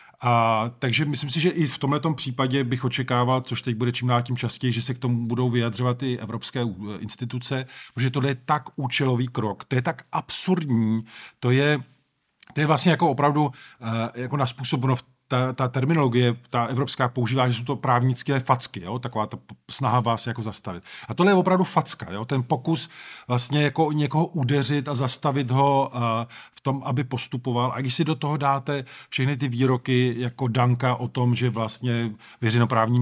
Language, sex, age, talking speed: Slovak, male, 40-59, 180 wpm